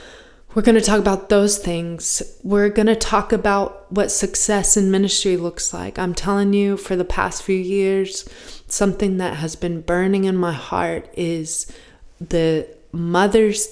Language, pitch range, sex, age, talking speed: English, 180-210 Hz, female, 20-39, 160 wpm